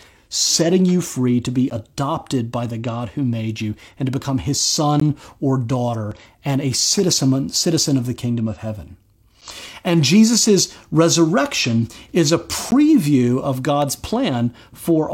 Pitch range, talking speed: 115-170 Hz, 150 wpm